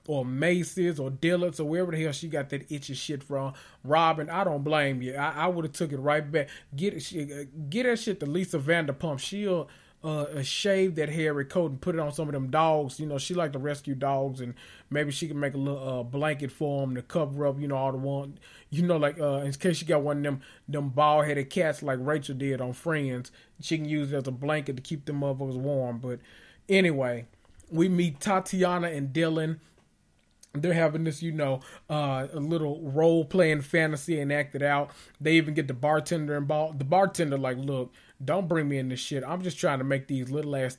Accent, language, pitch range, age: American, English, 135-160 Hz, 30-49